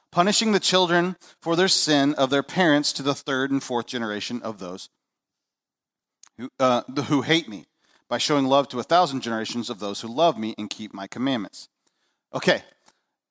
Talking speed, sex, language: 180 wpm, male, English